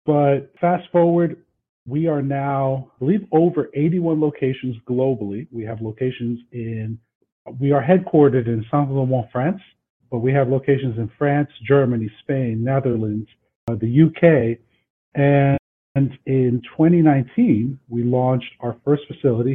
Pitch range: 115-145 Hz